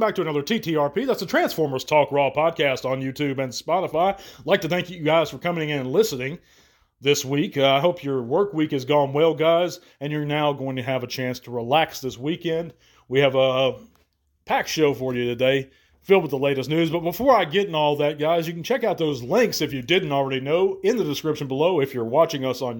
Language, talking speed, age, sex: English, 230 wpm, 40-59, male